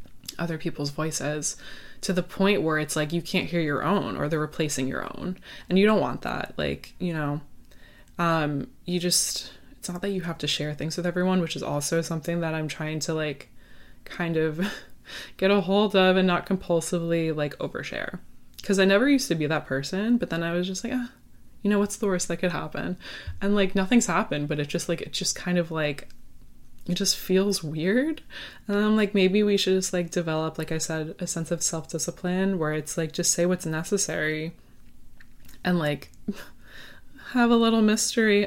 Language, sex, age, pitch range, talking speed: English, female, 20-39, 155-195 Hz, 205 wpm